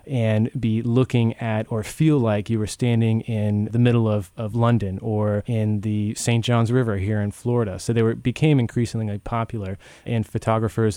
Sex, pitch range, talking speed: male, 105-120 Hz, 180 wpm